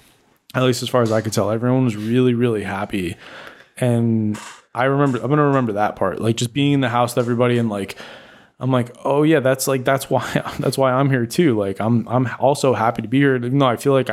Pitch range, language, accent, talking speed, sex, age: 110-130 Hz, English, American, 245 wpm, male, 20-39